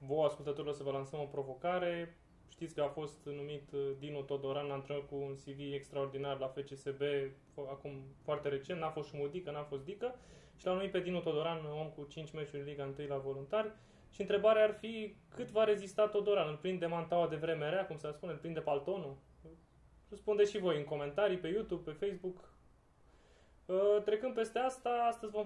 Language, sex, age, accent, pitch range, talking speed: Romanian, male, 20-39, native, 145-195 Hz, 185 wpm